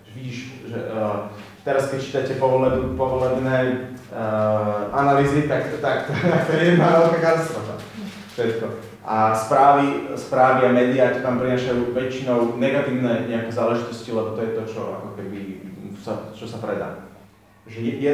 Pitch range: 115-135 Hz